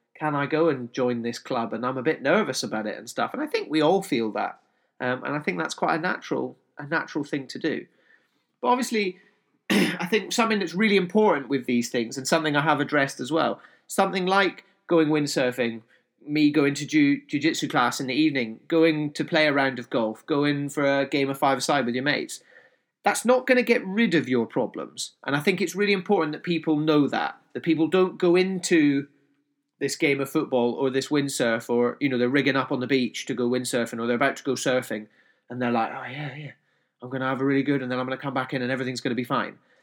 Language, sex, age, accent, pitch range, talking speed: English, male, 30-49, British, 130-165 Hz, 240 wpm